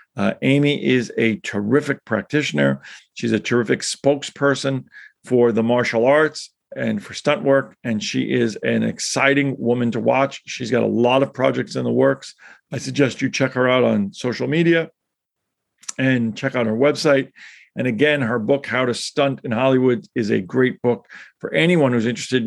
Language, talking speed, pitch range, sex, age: English, 175 wpm, 115-140 Hz, male, 50-69